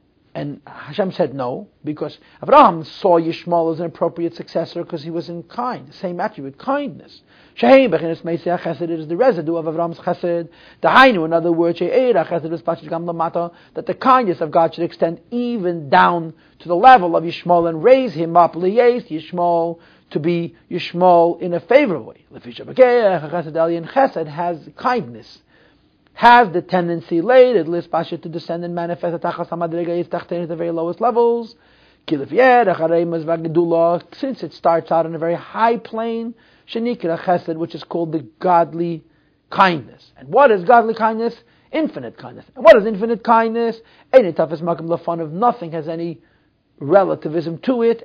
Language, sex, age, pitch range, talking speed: English, male, 50-69, 165-225 Hz, 145 wpm